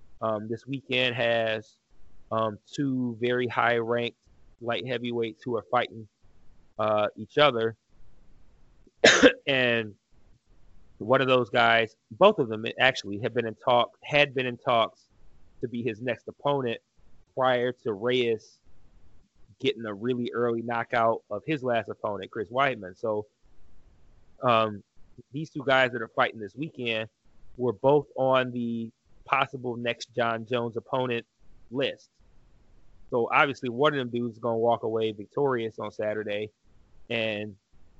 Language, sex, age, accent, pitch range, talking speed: English, male, 30-49, American, 110-130 Hz, 135 wpm